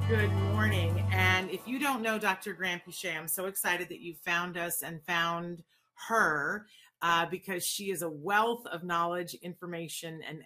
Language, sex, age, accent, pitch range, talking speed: English, female, 40-59, American, 165-205 Hz, 170 wpm